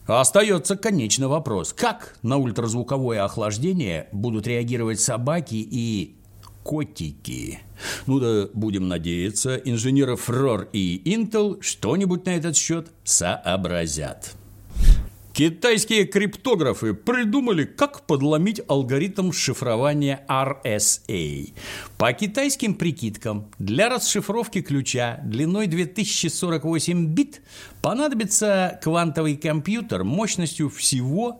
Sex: male